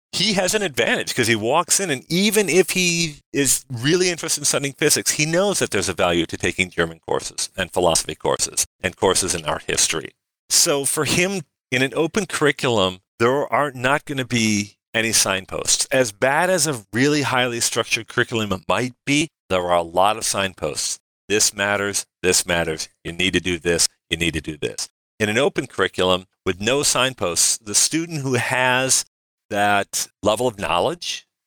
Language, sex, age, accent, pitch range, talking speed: English, male, 40-59, American, 100-130 Hz, 185 wpm